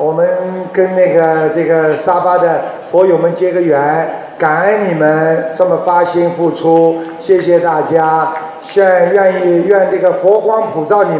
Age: 50-69